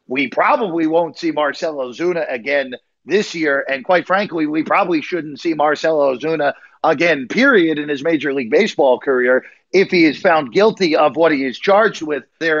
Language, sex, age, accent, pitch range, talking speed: English, male, 40-59, American, 150-195 Hz, 180 wpm